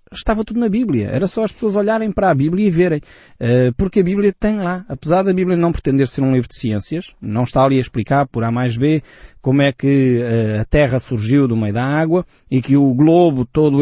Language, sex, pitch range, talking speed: Portuguese, male, 110-145 Hz, 230 wpm